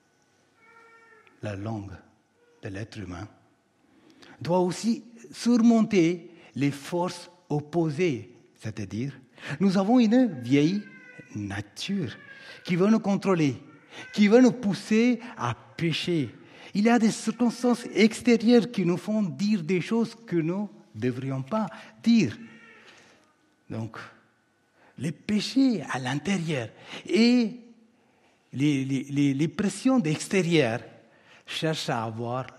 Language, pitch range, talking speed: French, 125-195 Hz, 110 wpm